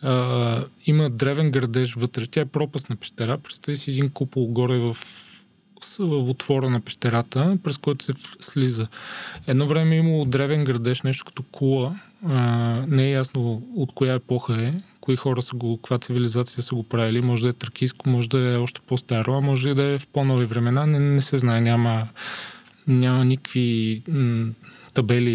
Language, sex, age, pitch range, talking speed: Bulgarian, male, 20-39, 125-145 Hz, 170 wpm